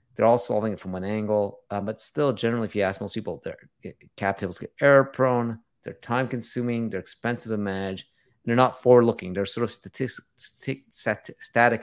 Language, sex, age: English, male, 30-49